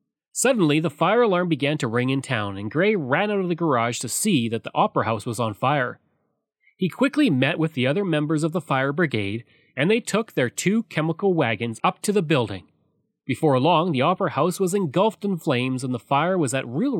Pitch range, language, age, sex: 130-185 Hz, English, 30-49, male